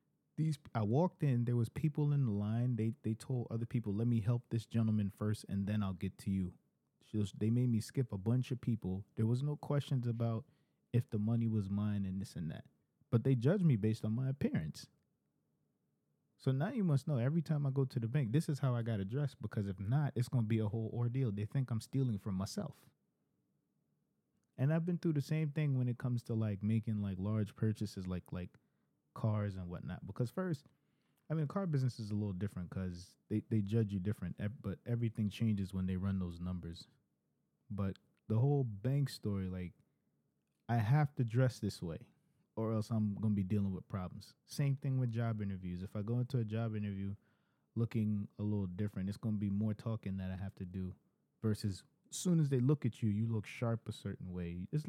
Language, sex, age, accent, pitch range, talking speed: English, male, 20-39, American, 100-135 Hz, 220 wpm